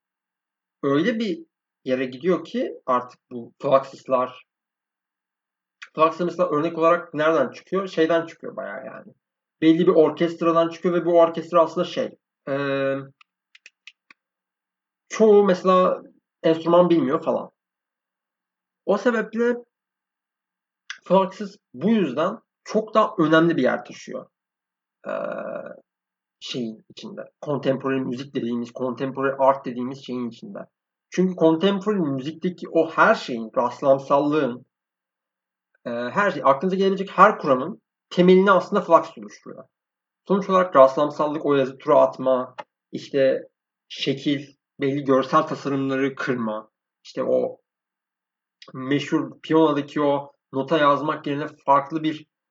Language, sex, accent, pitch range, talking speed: Turkish, male, native, 135-180 Hz, 105 wpm